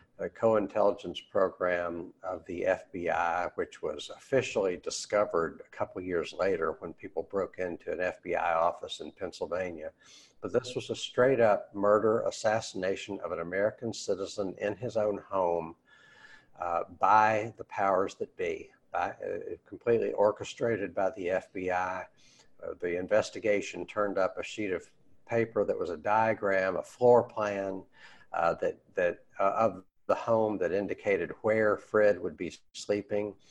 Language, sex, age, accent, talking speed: English, male, 60-79, American, 150 wpm